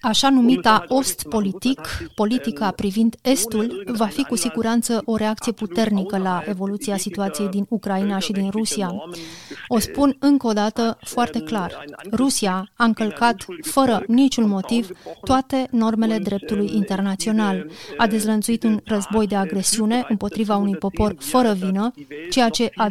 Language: Romanian